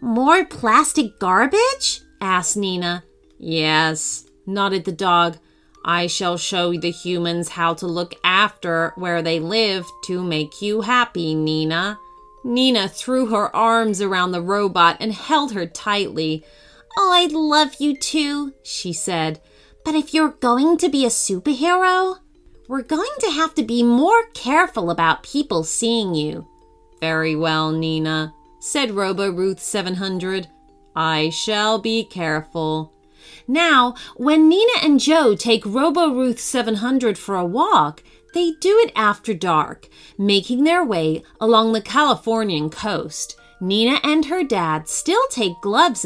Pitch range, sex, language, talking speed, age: 170-280 Hz, female, English, 135 wpm, 30-49